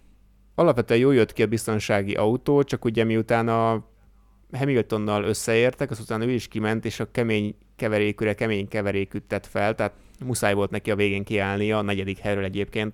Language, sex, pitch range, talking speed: Hungarian, male, 100-110 Hz, 160 wpm